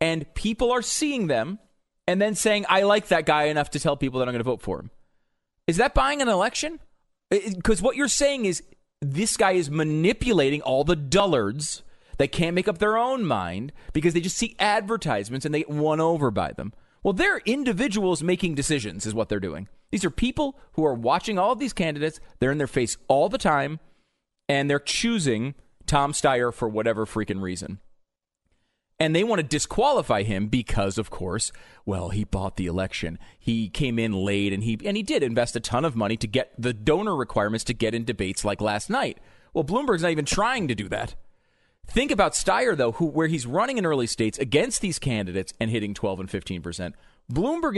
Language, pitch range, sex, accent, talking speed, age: English, 110-180 Hz, male, American, 205 wpm, 30-49